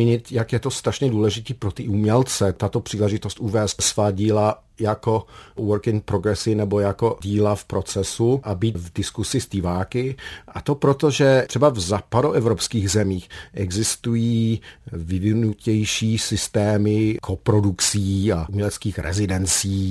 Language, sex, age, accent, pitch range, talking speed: Czech, male, 50-69, native, 100-120 Hz, 130 wpm